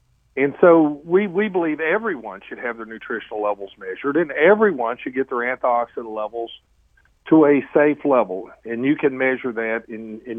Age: 50-69